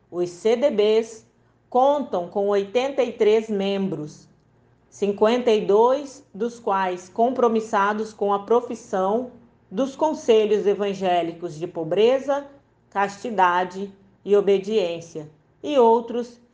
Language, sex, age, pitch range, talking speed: Portuguese, female, 40-59, 175-235 Hz, 85 wpm